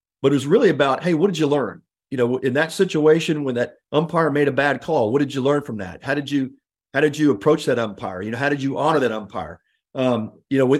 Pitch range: 125-155 Hz